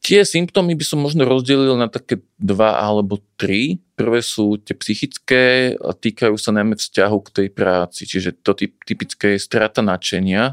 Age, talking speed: 40-59, 165 wpm